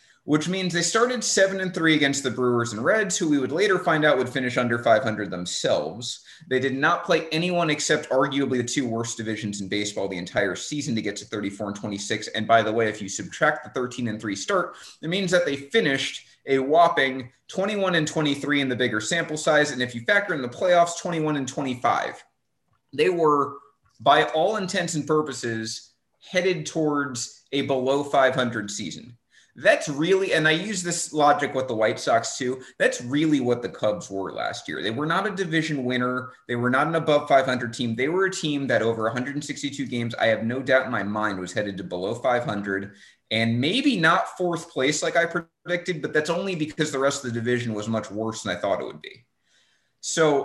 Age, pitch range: 30-49, 120-160 Hz